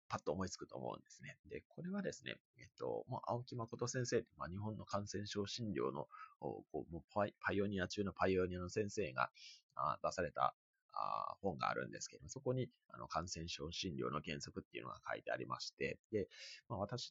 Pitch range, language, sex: 100-165 Hz, Japanese, male